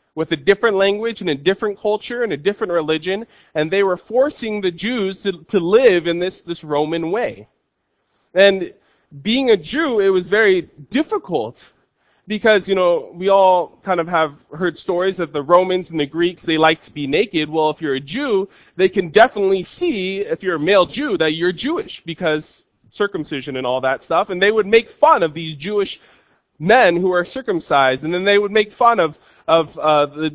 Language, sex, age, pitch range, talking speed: English, male, 20-39, 175-230 Hz, 200 wpm